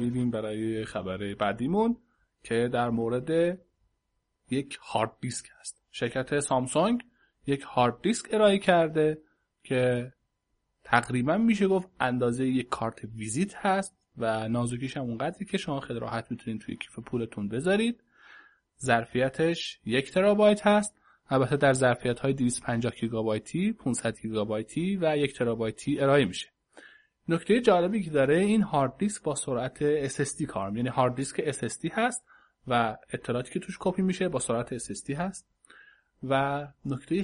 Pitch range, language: 120-185 Hz, Persian